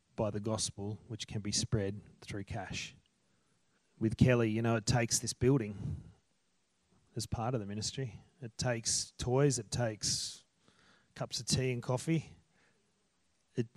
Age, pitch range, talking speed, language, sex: 30-49, 110-135 Hz, 145 wpm, English, male